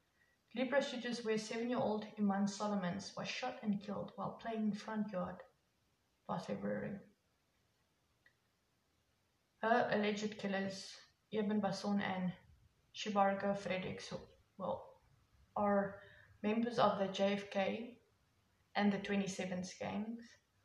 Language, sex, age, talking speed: English, female, 20-39, 100 wpm